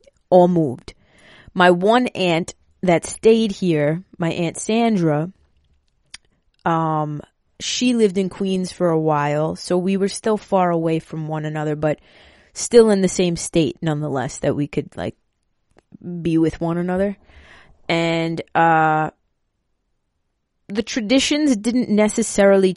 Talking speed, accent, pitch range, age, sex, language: 130 wpm, American, 155-195 Hz, 20-39, female, English